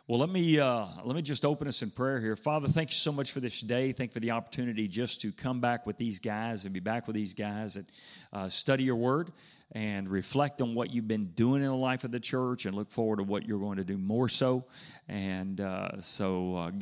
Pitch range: 100-135 Hz